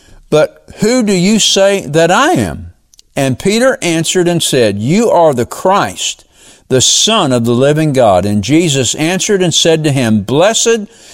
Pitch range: 120-190 Hz